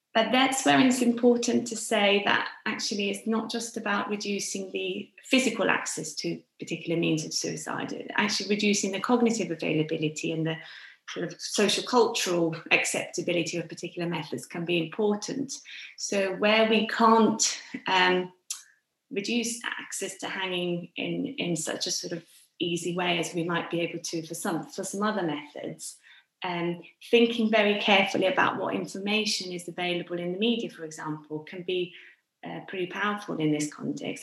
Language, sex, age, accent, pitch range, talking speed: English, female, 30-49, British, 165-210 Hz, 160 wpm